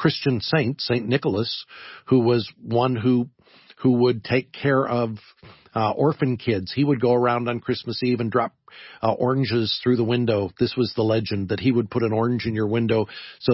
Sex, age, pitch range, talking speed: male, 50-69, 110-130 Hz, 195 wpm